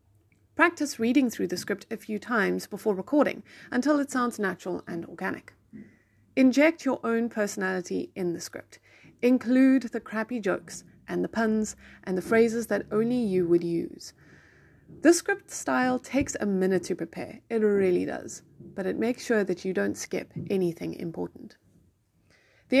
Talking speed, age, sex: 160 wpm, 30-49, female